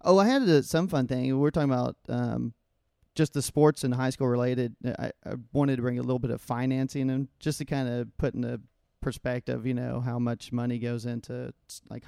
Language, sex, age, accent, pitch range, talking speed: English, male, 30-49, American, 120-135 Hz, 225 wpm